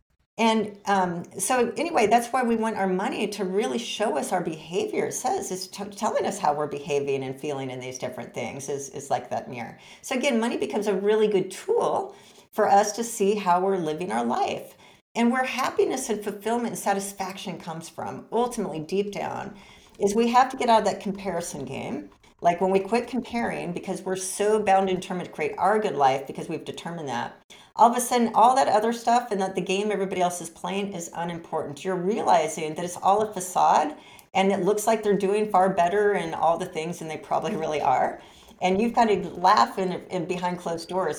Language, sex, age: English, female, 40-59